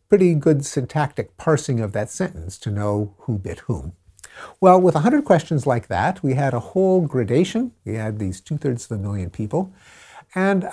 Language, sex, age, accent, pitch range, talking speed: English, male, 50-69, American, 110-185 Hz, 185 wpm